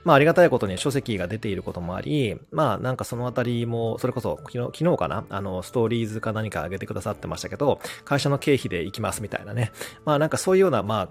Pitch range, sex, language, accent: 105-145 Hz, male, Japanese, native